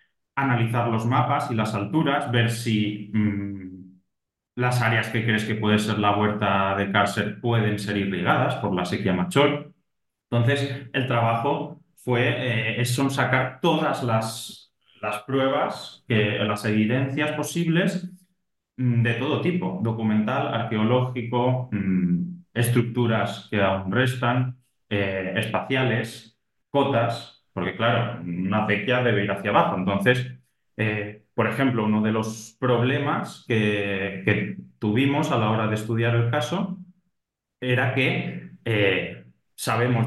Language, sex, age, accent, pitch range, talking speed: English, male, 30-49, Spanish, 105-140 Hz, 130 wpm